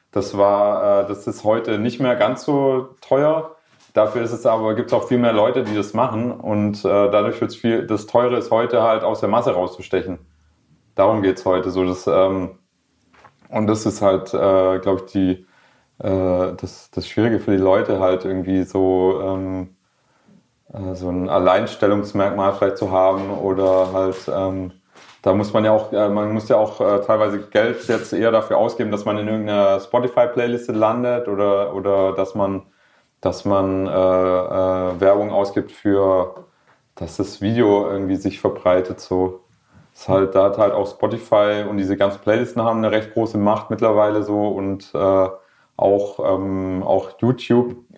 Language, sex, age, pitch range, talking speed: German, male, 30-49, 95-110 Hz, 175 wpm